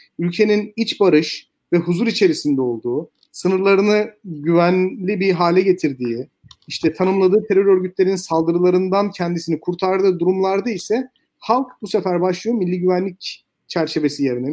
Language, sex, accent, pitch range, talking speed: Turkish, male, native, 150-210 Hz, 120 wpm